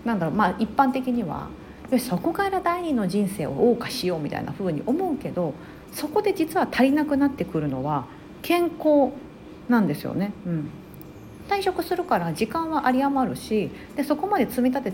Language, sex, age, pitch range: Japanese, female, 40-59, 180-295 Hz